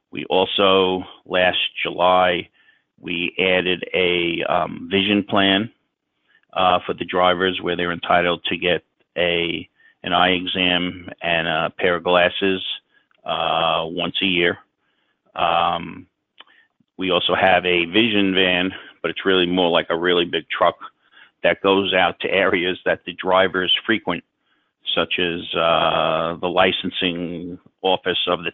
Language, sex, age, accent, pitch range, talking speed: English, male, 50-69, American, 85-95 Hz, 135 wpm